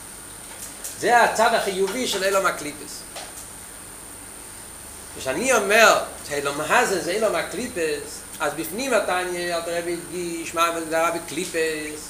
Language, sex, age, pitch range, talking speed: Hebrew, male, 40-59, 175-240 Hz, 110 wpm